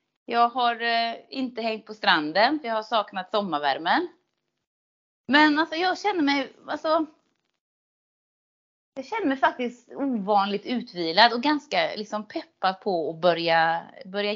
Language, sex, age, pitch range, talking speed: Swedish, female, 30-49, 195-260 Hz, 135 wpm